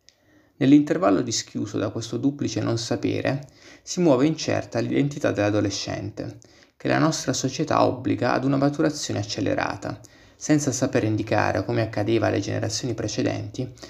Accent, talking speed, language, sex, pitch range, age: native, 125 wpm, Italian, male, 110-145 Hz, 30-49